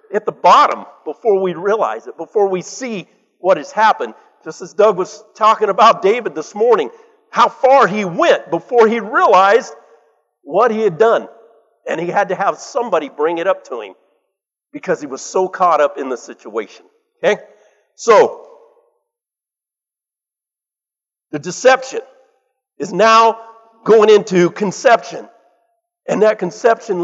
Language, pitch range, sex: English, 180-260 Hz, male